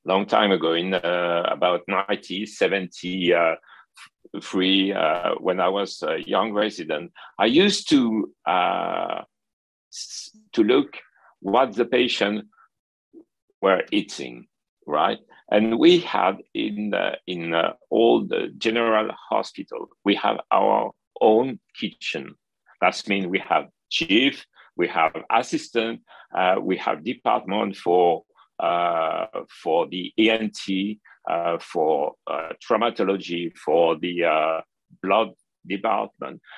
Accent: French